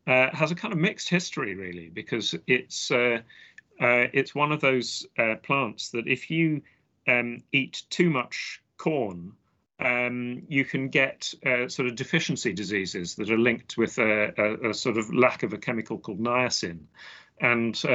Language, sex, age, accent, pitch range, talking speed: English, male, 40-59, British, 110-140 Hz, 170 wpm